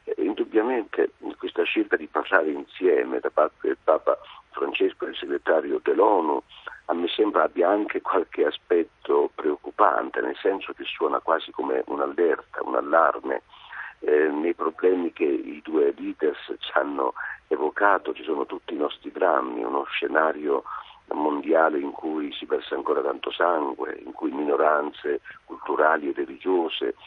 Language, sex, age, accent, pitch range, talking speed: Italian, male, 50-69, native, 355-440 Hz, 140 wpm